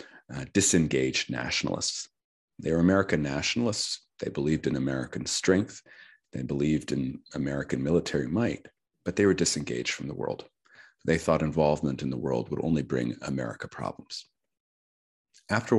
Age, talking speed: 40-59, 140 wpm